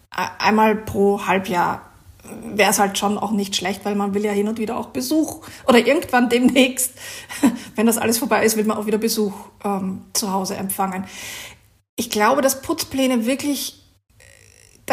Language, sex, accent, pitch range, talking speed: German, female, German, 215-250 Hz, 170 wpm